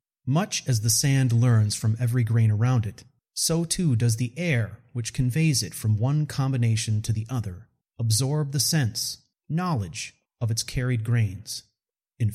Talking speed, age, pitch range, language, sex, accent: 160 wpm, 30-49, 115-140 Hz, English, male, American